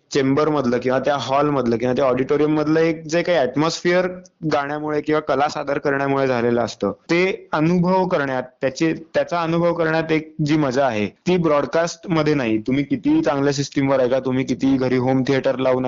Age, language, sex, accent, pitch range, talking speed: 20-39, Marathi, male, native, 135-175 Hz, 160 wpm